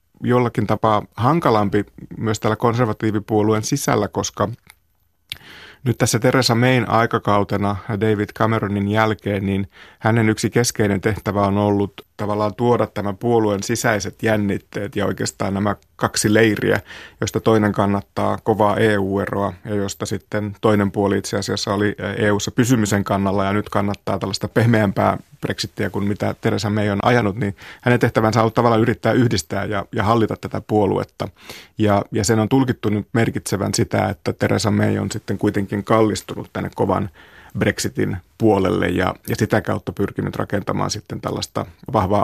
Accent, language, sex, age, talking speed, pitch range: native, Finnish, male, 30-49, 145 wpm, 100-110 Hz